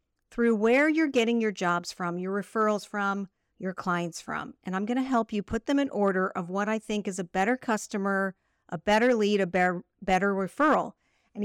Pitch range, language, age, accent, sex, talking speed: 195-250 Hz, English, 50-69, American, female, 200 wpm